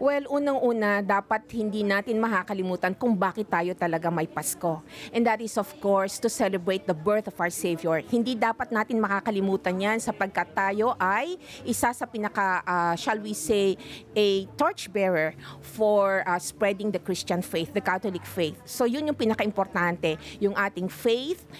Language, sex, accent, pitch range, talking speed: English, female, Filipino, 185-230 Hz, 160 wpm